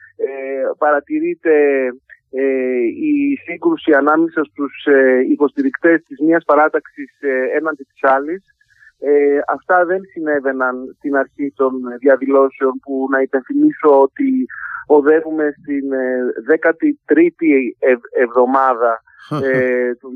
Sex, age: male, 40-59